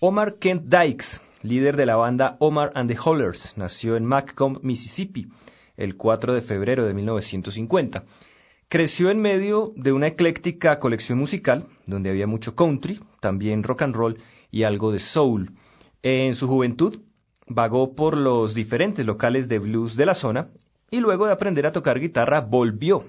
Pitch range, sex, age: 110-160 Hz, male, 30-49